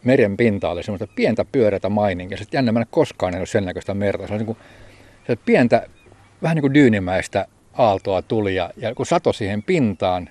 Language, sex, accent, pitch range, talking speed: Finnish, male, native, 95-120 Hz, 190 wpm